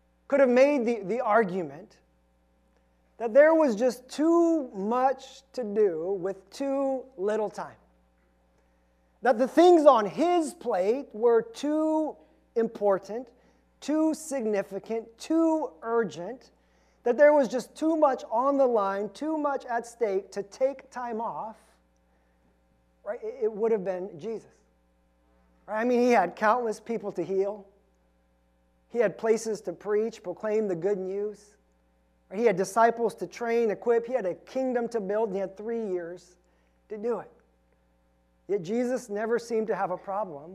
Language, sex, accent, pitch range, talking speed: English, male, American, 180-245 Hz, 150 wpm